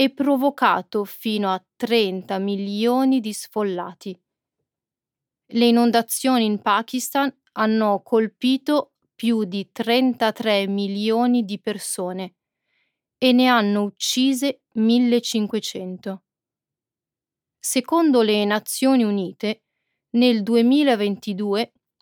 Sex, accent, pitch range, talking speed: female, native, 205-245 Hz, 85 wpm